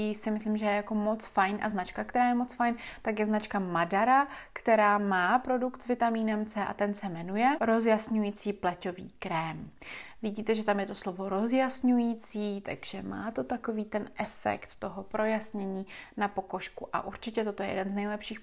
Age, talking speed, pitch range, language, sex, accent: 20-39, 175 wpm, 190-230 Hz, Czech, female, native